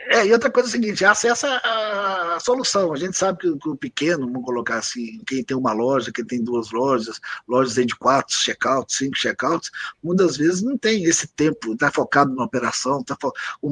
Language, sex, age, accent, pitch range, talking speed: Portuguese, male, 60-79, Brazilian, 135-210 Hz, 215 wpm